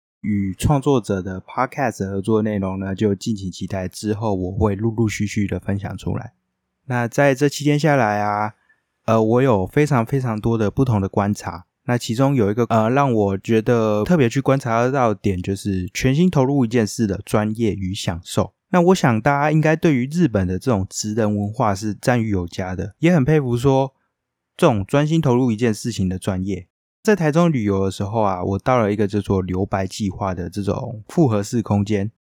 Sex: male